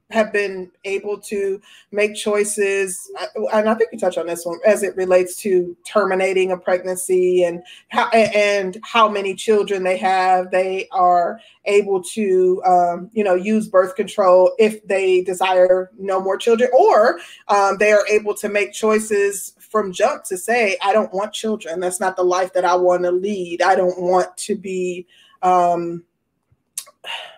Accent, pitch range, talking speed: American, 185-210 Hz, 165 wpm